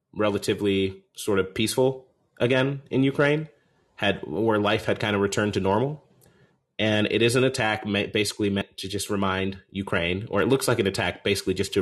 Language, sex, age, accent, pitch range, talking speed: English, male, 30-49, American, 95-130 Hz, 185 wpm